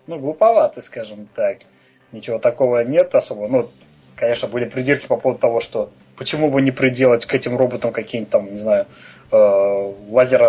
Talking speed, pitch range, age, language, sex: 155 wpm, 110-140 Hz, 20-39, Russian, male